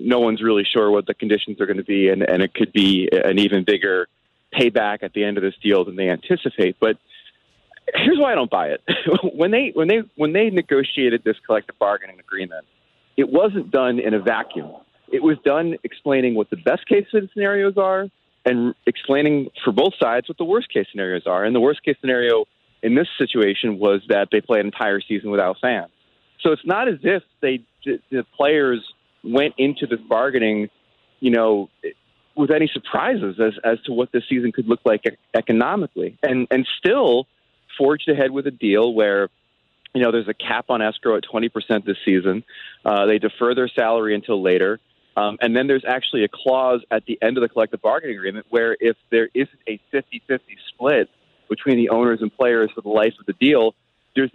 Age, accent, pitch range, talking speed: 30-49, American, 110-140 Hz, 200 wpm